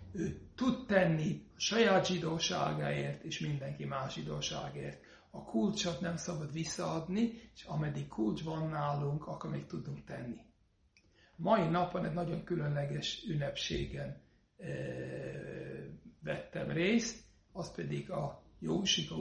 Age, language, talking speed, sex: 60-79, Hungarian, 115 wpm, male